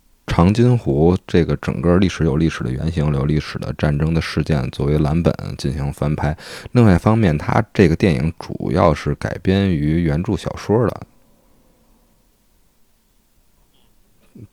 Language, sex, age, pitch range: Chinese, male, 20-39, 75-90 Hz